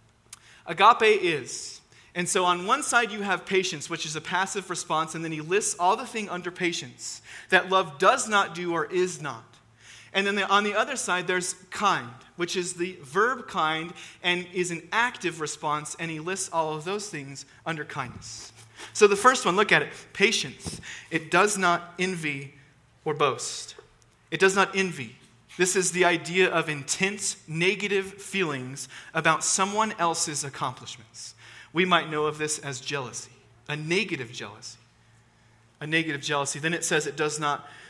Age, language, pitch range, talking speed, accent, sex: 30-49, English, 140-185 Hz, 170 wpm, American, male